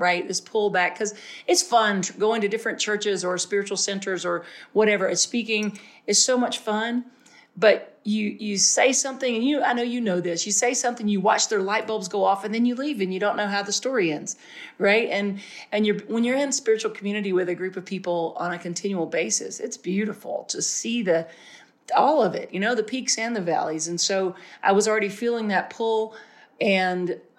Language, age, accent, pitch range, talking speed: English, 40-59, American, 180-225 Hz, 210 wpm